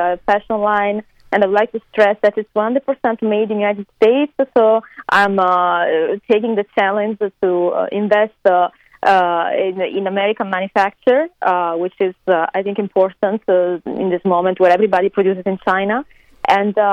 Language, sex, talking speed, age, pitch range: English, female, 165 wpm, 20-39, 185-225 Hz